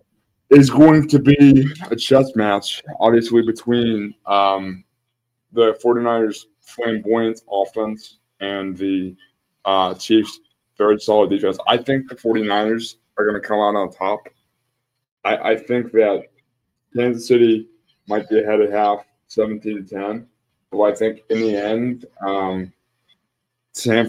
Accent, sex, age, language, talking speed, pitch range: American, male, 20-39, English, 135 wpm, 100-120 Hz